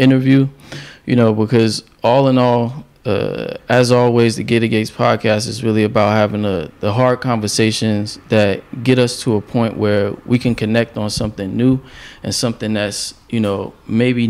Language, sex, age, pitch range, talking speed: English, male, 20-39, 105-120 Hz, 170 wpm